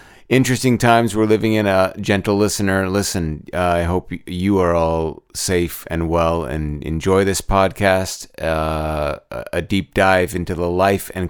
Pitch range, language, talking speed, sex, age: 85-110 Hz, English, 160 wpm, male, 30-49